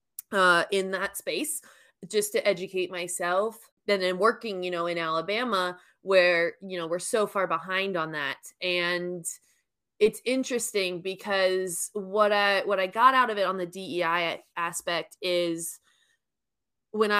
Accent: American